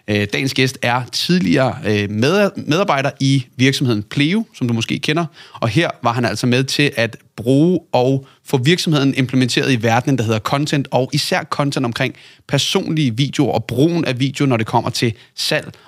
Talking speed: 170 wpm